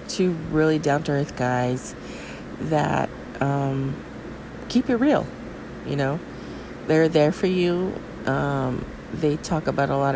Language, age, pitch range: English, 40-59, 135-170 Hz